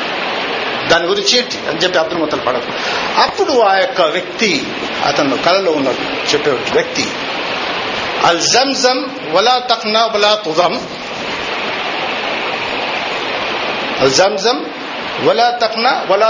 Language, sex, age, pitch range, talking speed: Telugu, male, 50-69, 230-285 Hz, 90 wpm